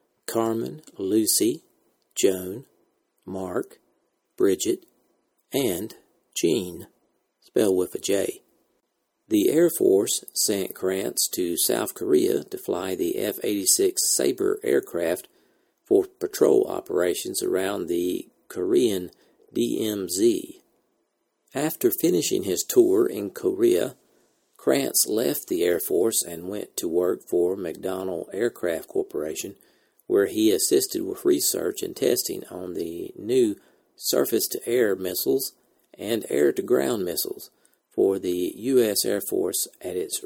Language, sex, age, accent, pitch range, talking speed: English, male, 50-69, American, 360-400 Hz, 110 wpm